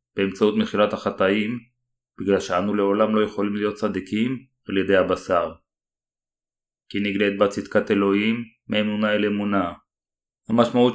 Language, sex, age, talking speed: Hebrew, male, 30-49, 120 wpm